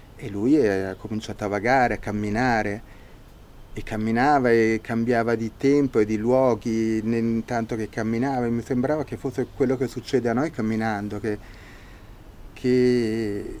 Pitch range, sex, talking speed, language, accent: 100-120 Hz, male, 150 wpm, Italian, native